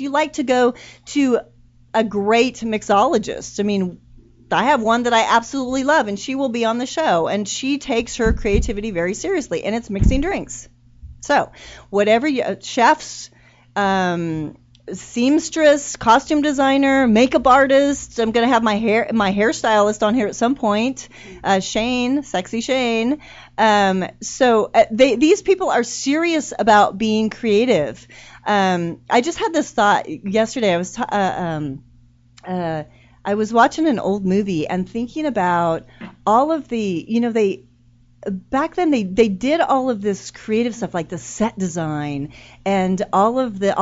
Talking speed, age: 160 wpm, 30-49